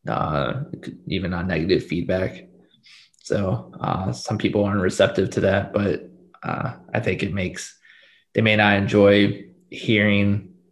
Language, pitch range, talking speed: English, 95-105 Hz, 135 wpm